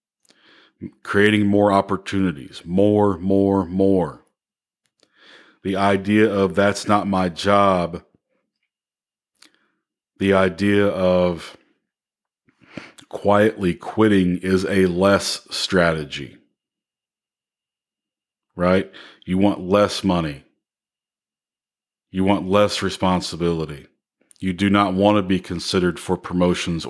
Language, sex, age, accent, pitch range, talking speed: English, male, 40-59, American, 90-105 Hz, 90 wpm